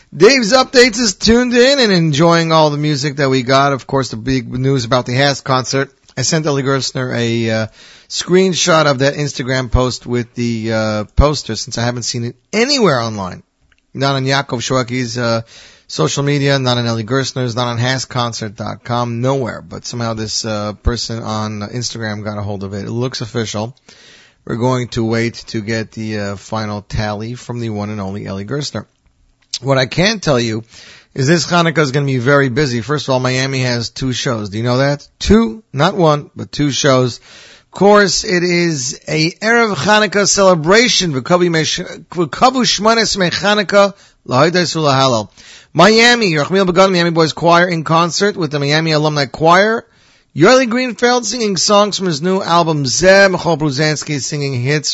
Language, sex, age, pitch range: English, male, 40-59, 120-175 Hz